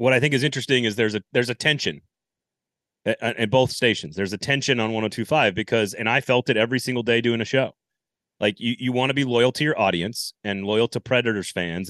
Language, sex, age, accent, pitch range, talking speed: English, male, 30-49, American, 105-135 Hz, 235 wpm